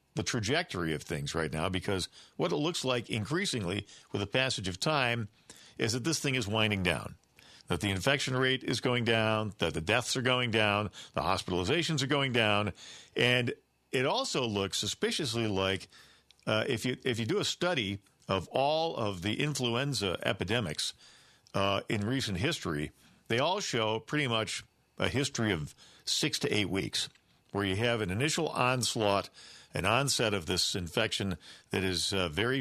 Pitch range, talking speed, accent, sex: 95-130 Hz, 170 wpm, American, male